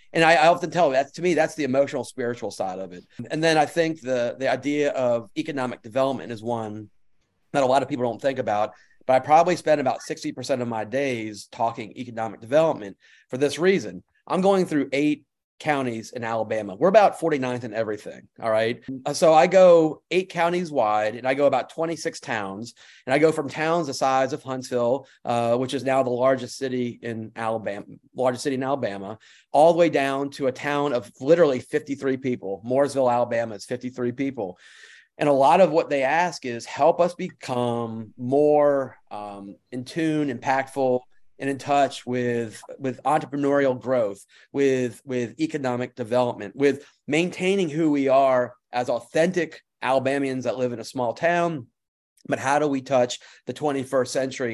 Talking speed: 180 wpm